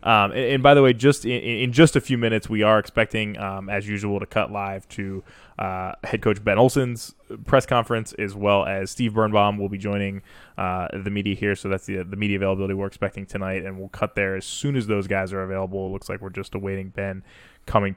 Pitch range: 100-110 Hz